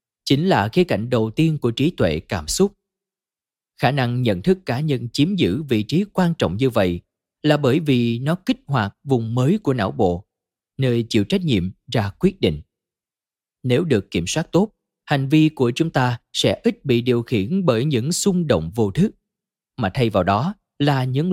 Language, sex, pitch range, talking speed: Vietnamese, male, 115-170 Hz, 195 wpm